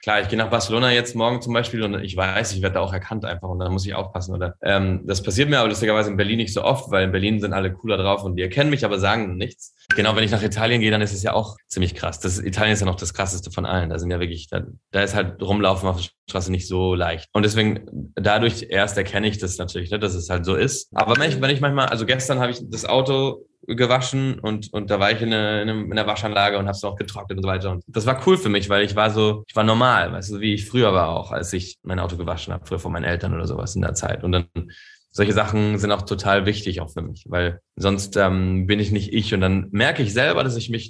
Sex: male